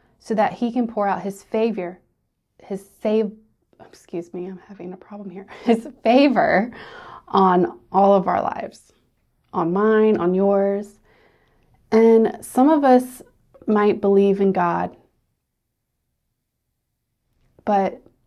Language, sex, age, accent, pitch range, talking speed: English, female, 20-39, American, 180-215 Hz, 120 wpm